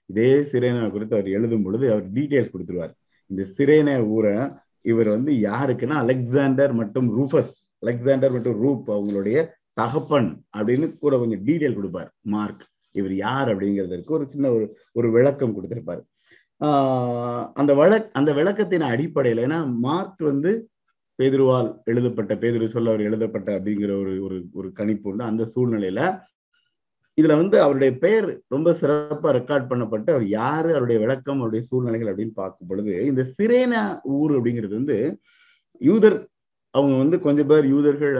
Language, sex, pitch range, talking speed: Tamil, male, 115-150 Hz, 100 wpm